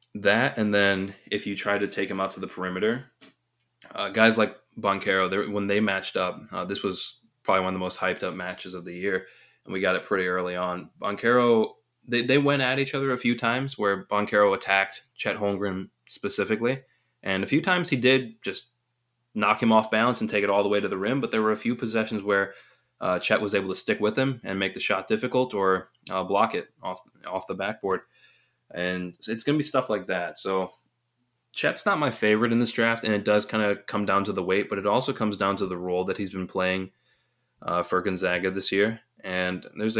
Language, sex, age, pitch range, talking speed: English, male, 20-39, 95-115 Hz, 225 wpm